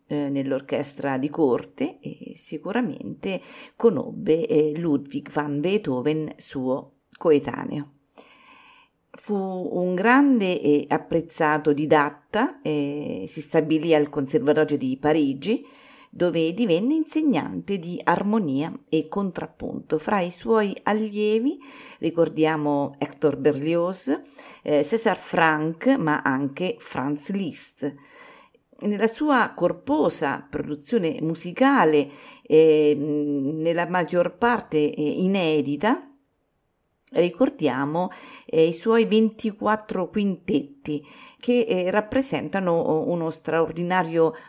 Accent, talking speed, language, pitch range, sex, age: native, 90 wpm, Italian, 150-225 Hz, female, 50-69